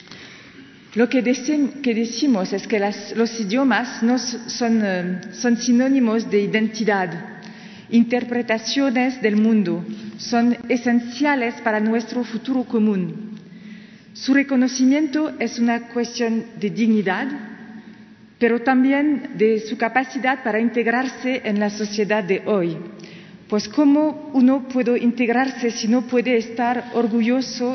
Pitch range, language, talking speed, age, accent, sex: 210-250 Hz, Spanish, 110 wpm, 40-59, French, female